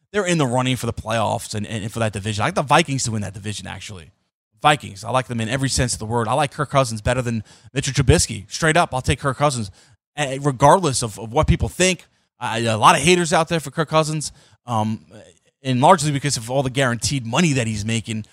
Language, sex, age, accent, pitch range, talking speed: English, male, 20-39, American, 110-140 Hz, 240 wpm